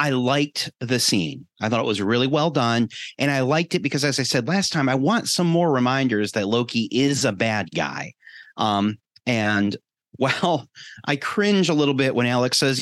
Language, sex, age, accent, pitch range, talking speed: English, male, 30-49, American, 105-135 Hz, 200 wpm